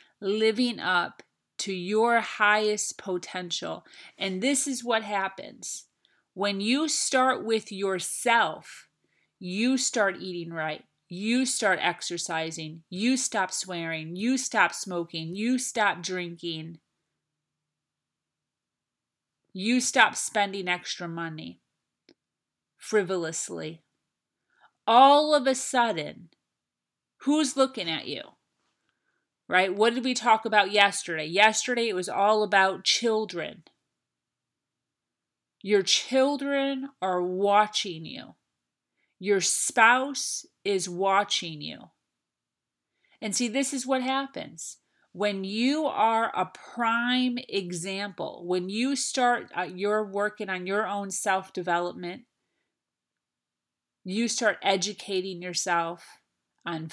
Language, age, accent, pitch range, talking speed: English, 30-49, American, 175-235 Hz, 100 wpm